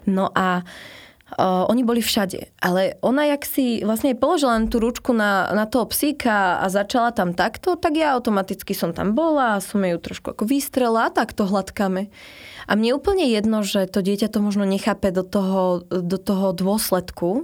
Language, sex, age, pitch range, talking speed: Slovak, female, 20-39, 185-230 Hz, 180 wpm